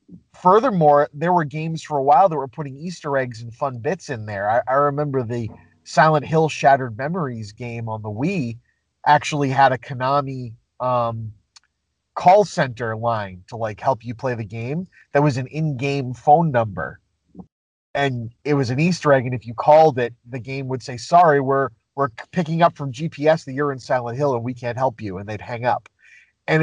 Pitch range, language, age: 120-155 Hz, English, 30-49